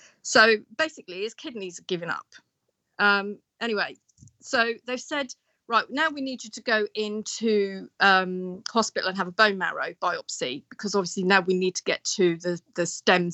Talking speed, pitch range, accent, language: 175 wpm, 185-230 Hz, British, English